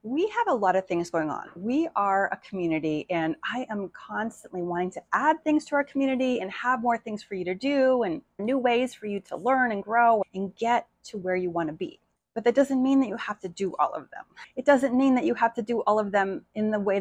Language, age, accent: English, 30-49, American